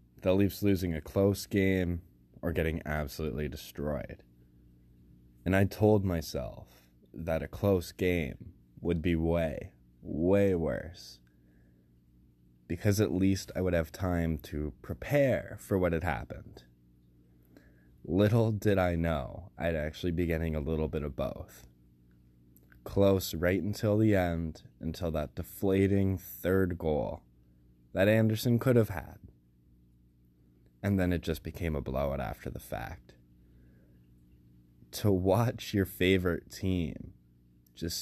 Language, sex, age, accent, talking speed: English, male, 20-39, American, 125 wpm